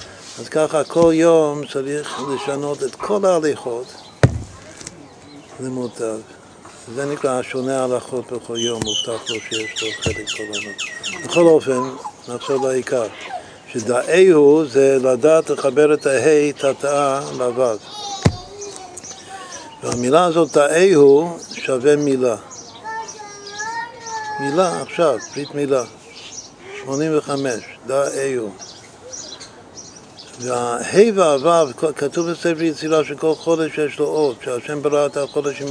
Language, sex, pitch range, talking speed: Hebrew, male, 135-160 Hz, 100 wpm